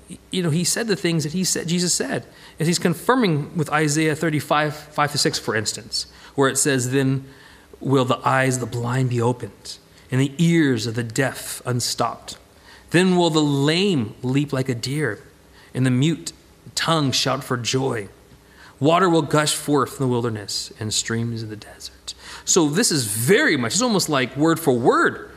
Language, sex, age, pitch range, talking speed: English, male, 30-49, 125-165 Hz, 185 wpm